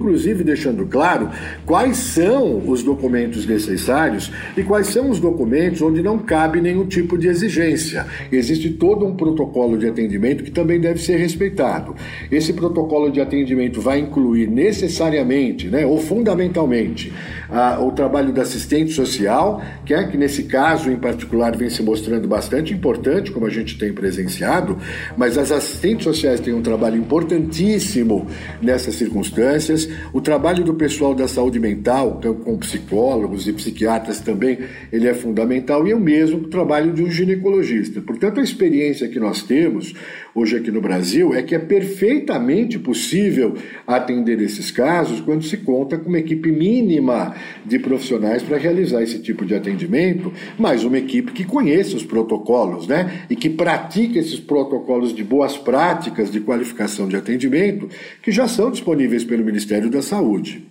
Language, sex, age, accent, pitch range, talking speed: Portuguese, male, 60-79, Brazilian, 115-170 Hz, 155 wpm